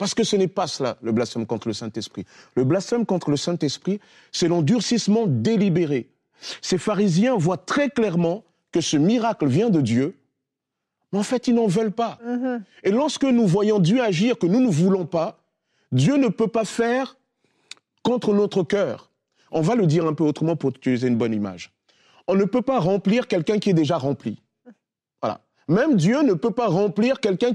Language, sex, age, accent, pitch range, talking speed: French, male, 40-59, French, 160-225 Hz, 185 wpm